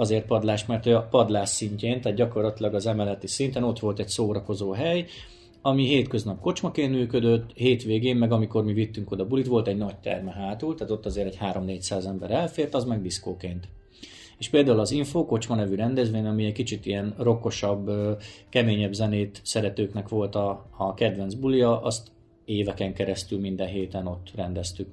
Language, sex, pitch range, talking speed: Hungarian, male, 100-120 Hz, 165 wpm